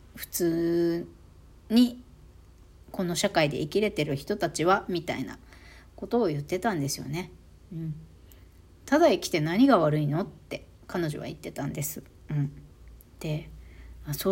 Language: Japanese